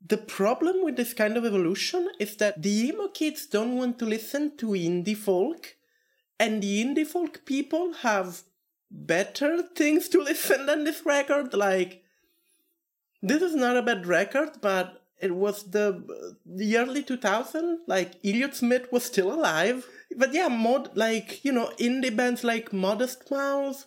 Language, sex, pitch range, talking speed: English, male, 210-290 Hz, 160 wpm